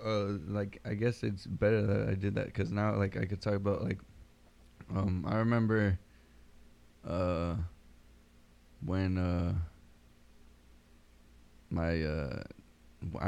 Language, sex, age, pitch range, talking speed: English, male, 20-39, 85-95 Hz, 115 wpm